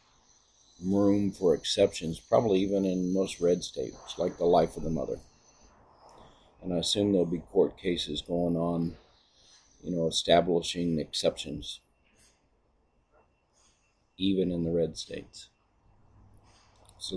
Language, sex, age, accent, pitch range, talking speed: English, male, 50-69, American, 80-100 Hz, 120 wpm